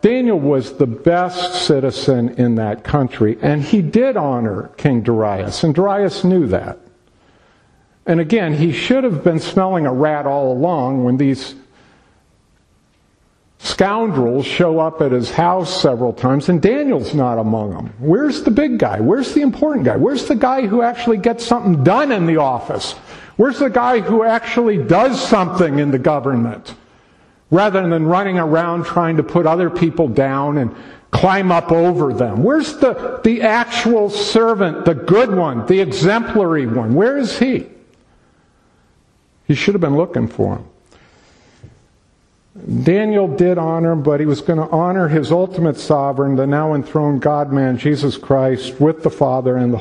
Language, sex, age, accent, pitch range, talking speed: English, male, 50-69, American, 130-190 Hz, 160 wpm